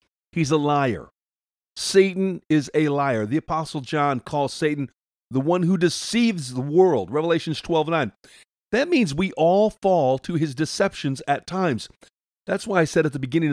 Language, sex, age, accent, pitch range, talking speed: English, male, 50-69, American, 130-185 Hz, 170 wpm